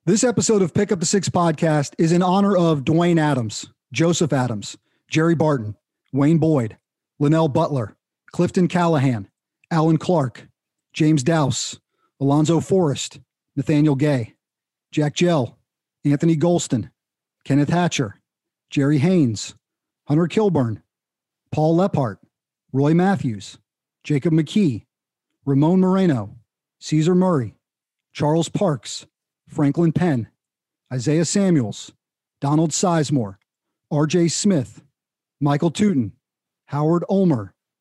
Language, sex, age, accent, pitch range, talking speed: English, male, 40-59, American, 135-170 Hz, 105 wpm